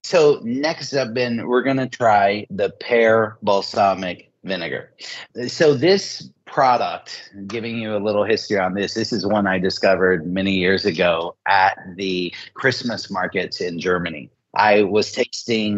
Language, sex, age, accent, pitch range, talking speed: English, male, 30-49, American, 100-125 Hz, 150 wpm